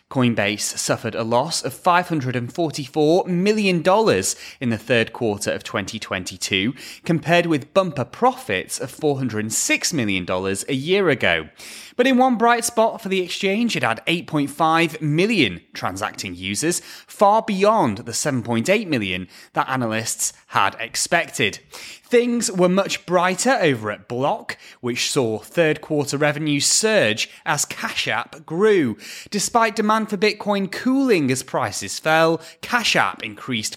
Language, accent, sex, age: English, British, male, 30-49